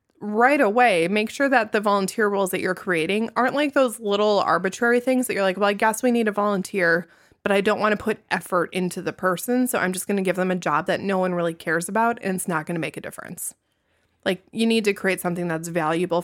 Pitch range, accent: 185-235 Hz, American